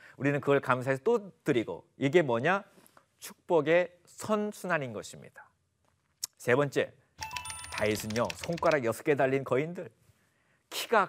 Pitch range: 120-180 Hz